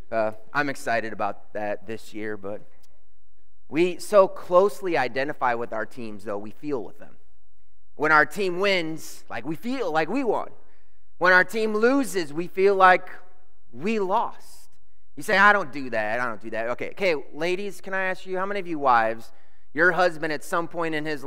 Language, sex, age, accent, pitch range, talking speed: English, male, 30-49, American, 120-195 Hz, 190 wpm